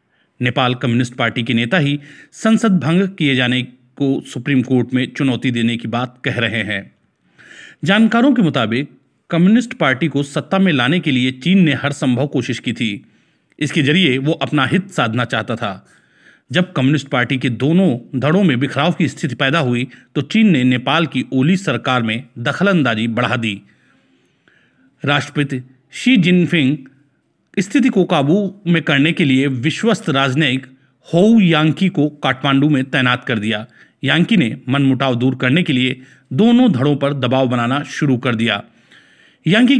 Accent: native